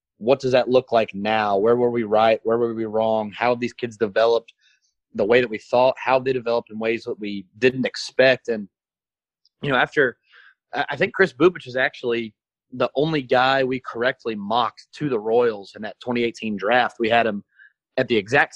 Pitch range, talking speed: 115-140 Hz, 205 wpm